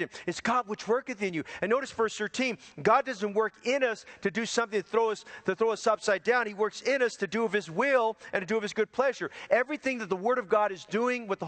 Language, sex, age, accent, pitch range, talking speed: English, male, 40-59, American, 200-245 Hz, 275 wpm